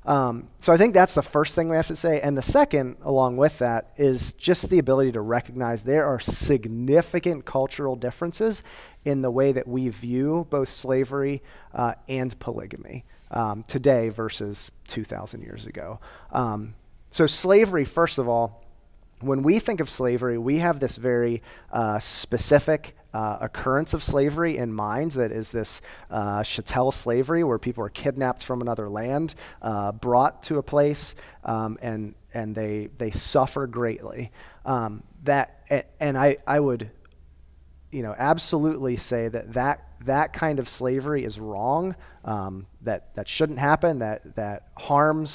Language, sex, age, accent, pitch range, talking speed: English, male, 30-49, American, 115-150 Hz, 160 wpm